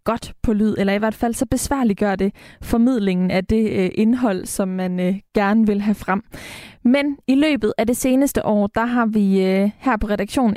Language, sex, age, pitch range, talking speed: Danish, female, 20-39, 205-250 Hz, 195 wpm